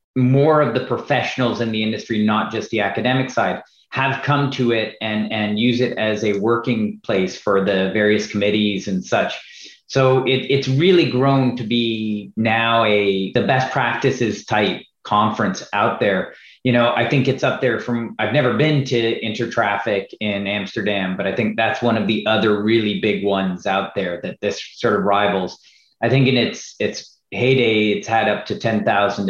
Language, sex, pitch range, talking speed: English, male, 105-130 Hz, 185 wpm